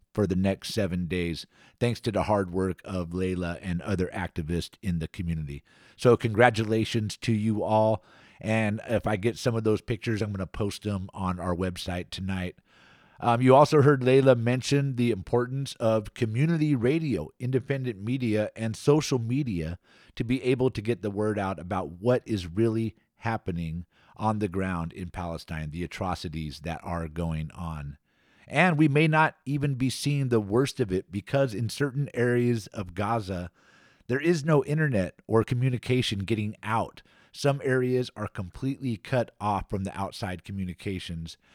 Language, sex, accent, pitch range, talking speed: English, male, American, 90-125 Hz, 165 wpm